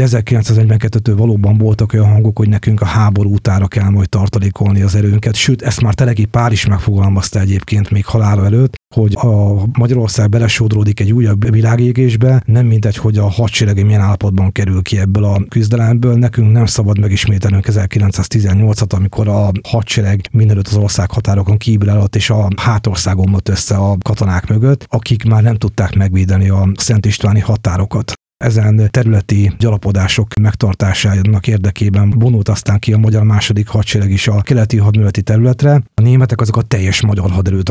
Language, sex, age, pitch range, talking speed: Hungarian, male, 30-49, 100-115 Hz, 160 wpm